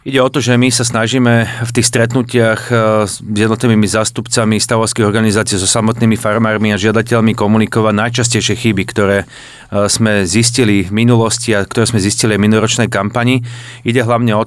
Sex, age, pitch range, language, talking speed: male, 40-59, 105-120 Hz, Slovak, 160 wpm